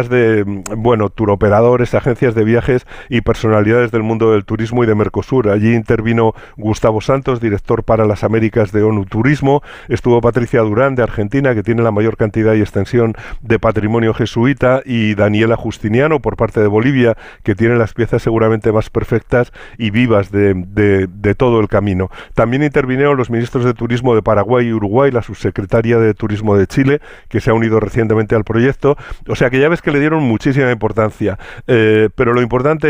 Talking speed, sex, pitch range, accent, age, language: 180 wpm, male, 110-125 Hz, Spanish, 50-69, Spanish